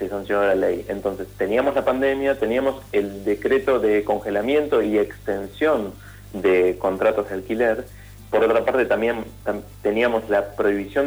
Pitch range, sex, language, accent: 100-125 Hz, male, Spanish, Argentinian